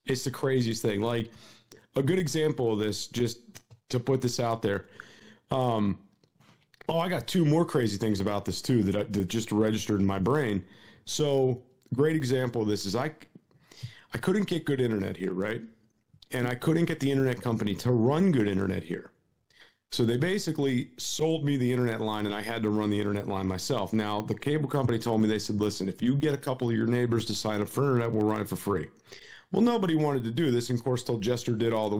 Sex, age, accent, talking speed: male, 40-59, American, 220 wpm